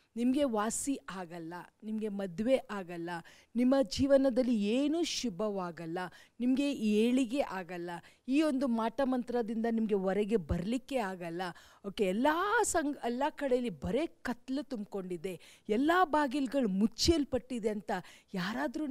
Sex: female